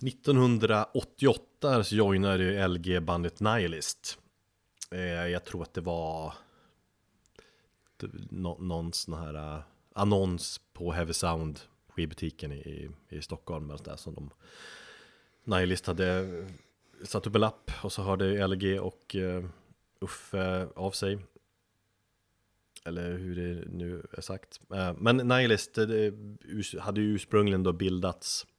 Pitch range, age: 85-105 Hz, 30-49